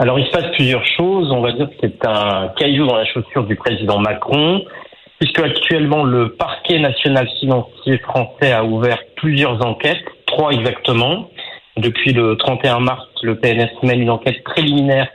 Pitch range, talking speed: 115-150 Hz, 165 wpm